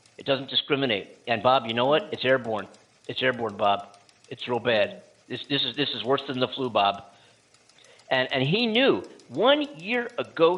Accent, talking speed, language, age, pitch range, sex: American, 185 wpm, English, 50-69, 110-130 Hz, male